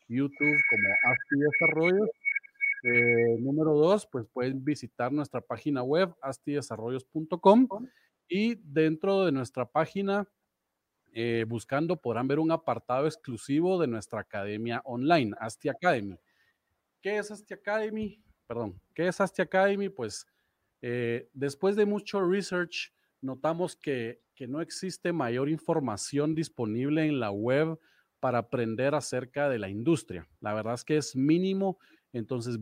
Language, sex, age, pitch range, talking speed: Spanish, male, 40-59, 120-165 Hz, 130 wpm